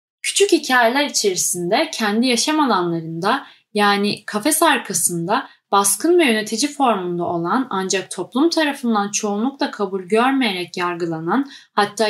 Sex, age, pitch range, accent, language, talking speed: female, 10-29, 195-265 Hz, native, Turkish, 110 wpm